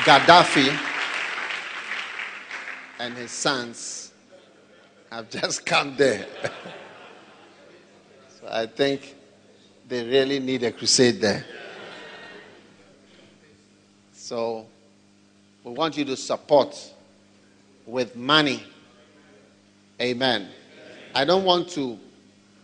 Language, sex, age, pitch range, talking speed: English, male, 50-69, 100-130 Hz, 80 wpm